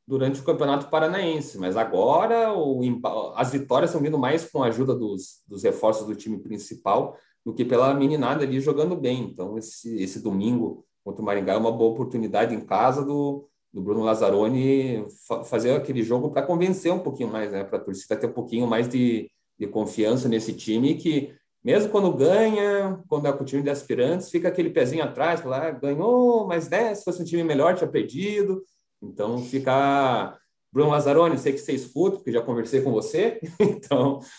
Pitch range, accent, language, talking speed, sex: 120-160 Hz, Brazilian, Portuguese, 190 wpm, male